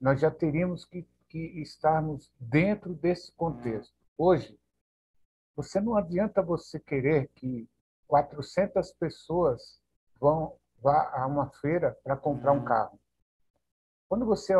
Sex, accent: male, Brazilian